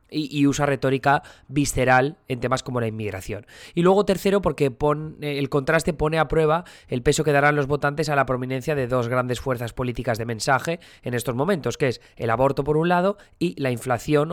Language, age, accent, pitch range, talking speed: Spanish, 20-39, Spanish, 130-155 Hz, 205 wpm